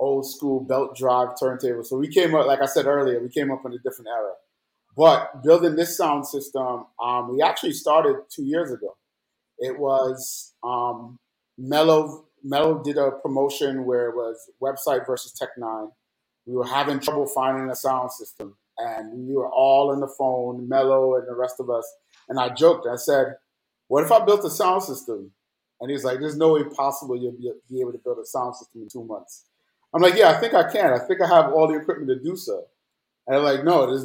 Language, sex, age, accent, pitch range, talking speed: English, male, 30-49, American, 125-145 Hz, 210 wpm